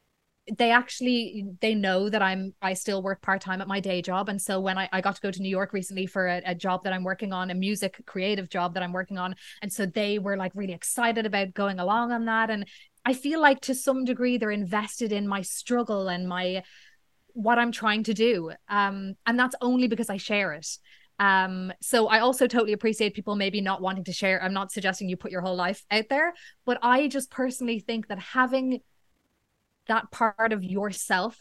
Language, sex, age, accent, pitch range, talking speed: English, female, 20-39, Irish, 190-240 Hz, 220 wpm